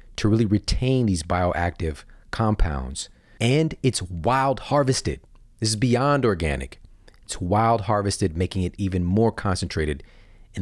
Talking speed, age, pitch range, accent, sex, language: 130 wpm, 40-59, 85-115 Hz, American, male, English